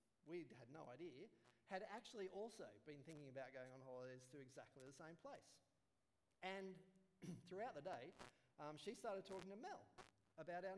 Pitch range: 125-200 Hz